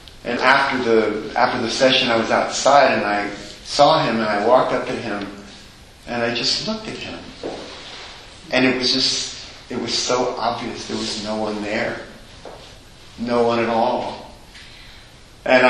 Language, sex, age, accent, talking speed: English, male, 50-69, American, 165 wpm